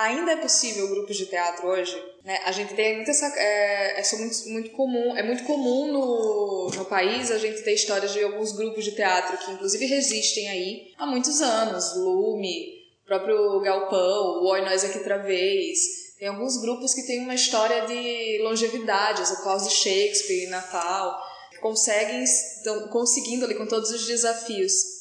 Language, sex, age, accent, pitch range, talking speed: Portuguese, female, 10-29, Brazilian, 200-265 Hz, 170 wpm